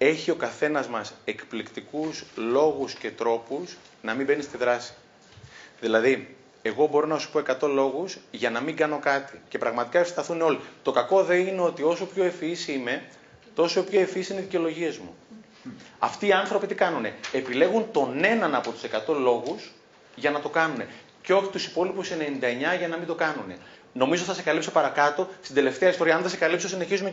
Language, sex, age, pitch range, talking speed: Greek, male, 30-49, 135-185 Hz, 190 wpm